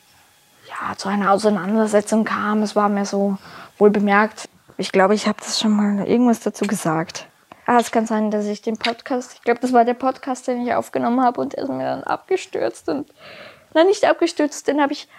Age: 20-39